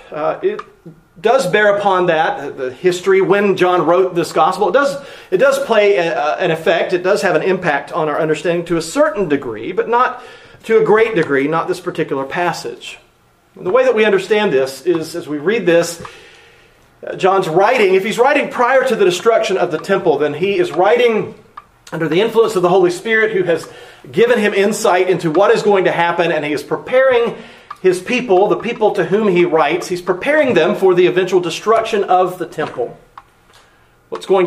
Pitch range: 170-235 Hz